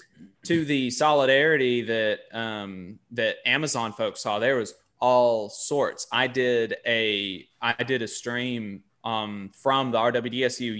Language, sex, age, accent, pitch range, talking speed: English, male, 20-39, American, 100-115 Hz, 135 wpm